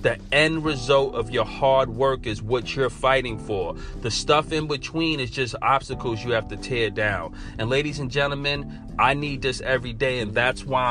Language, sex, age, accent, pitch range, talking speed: English, male, 30-49, American, 110-140 Hz, 200 wpm